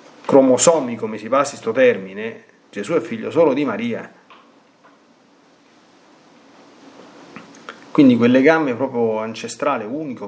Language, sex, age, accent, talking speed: Italian, male, 40-59, native, 105 wpm